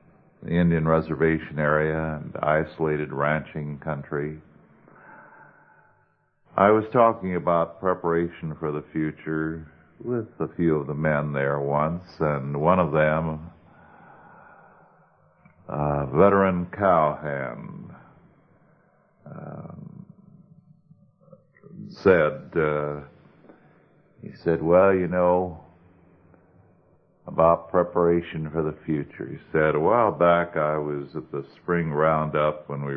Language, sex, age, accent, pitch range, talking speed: English, male, 50-69, American, 75-90 Hz, 100 wpm